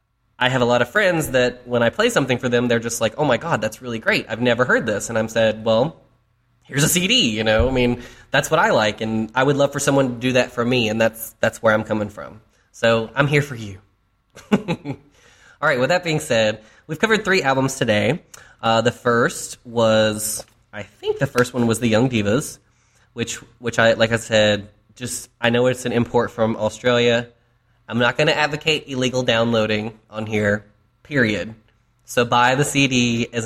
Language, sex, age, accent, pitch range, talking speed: English, male, 20-39, American, 110-125 Hz, 210 wpm